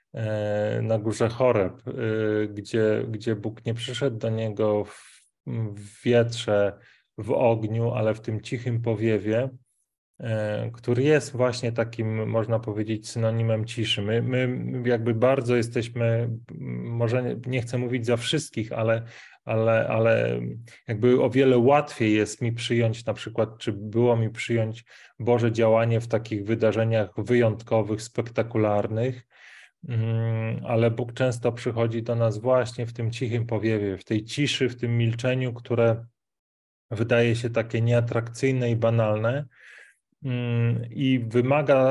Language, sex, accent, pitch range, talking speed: Polish, male, native, 110-120 Hz, 125 wpm